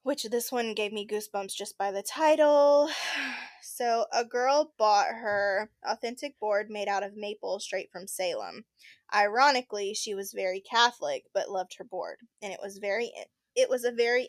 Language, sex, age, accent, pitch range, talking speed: English, female, 10-29, American, 200-245 Hz, 170 wpm